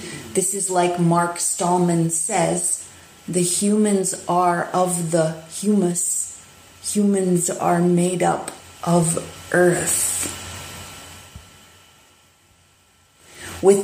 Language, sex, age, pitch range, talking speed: English, female, 40-59, 110-190 Hz, 80 wpm